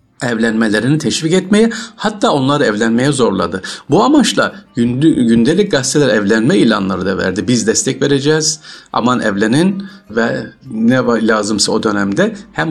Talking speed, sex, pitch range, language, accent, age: 125 wpm, male, 105-170 Hz, Turkish, native, 50-69